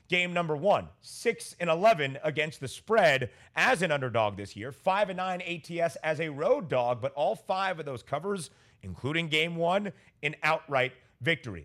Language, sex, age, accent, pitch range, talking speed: English, male, 30-49, American, 130-175 Hz, 175 wpm